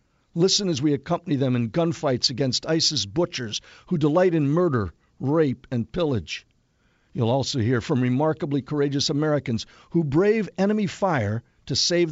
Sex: male